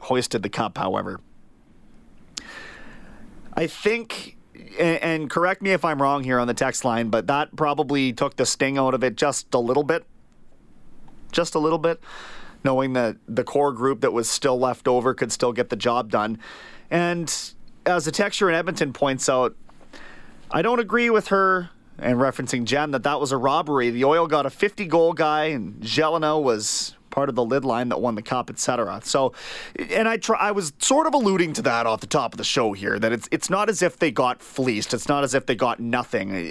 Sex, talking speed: male, 205 wpm